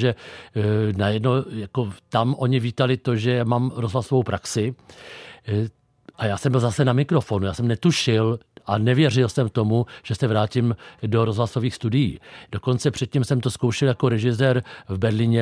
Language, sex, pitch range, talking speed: Czech, male, 115-130 Hz, 165 wpm